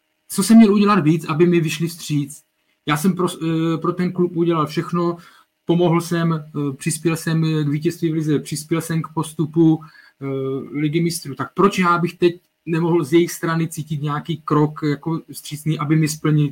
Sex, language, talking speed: male, Czech, 180 wpm